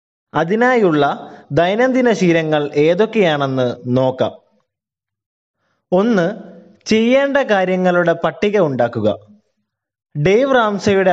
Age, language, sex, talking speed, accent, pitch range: 20-39, Malayalam, male, 65 wpm, native, 150-205 Hz